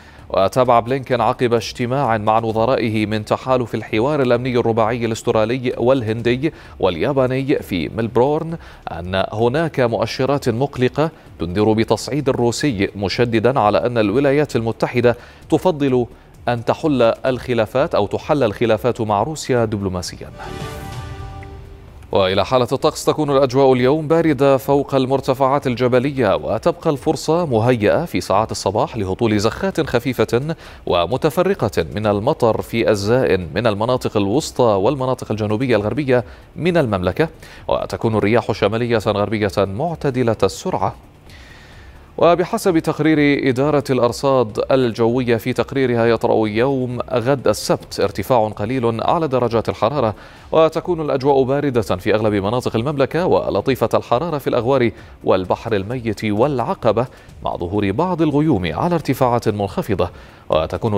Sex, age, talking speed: male, 30-49, 110 wpm